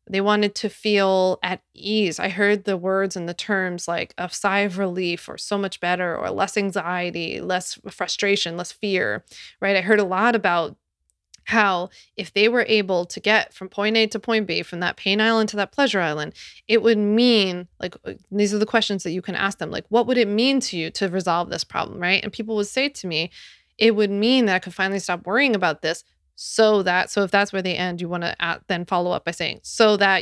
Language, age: English, 20-39